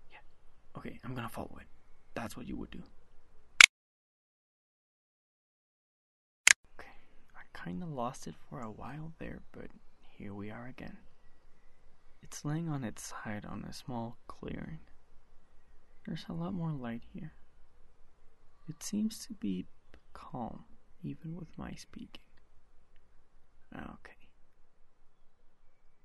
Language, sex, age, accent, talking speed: English, male, 20-39, American, 115 wpm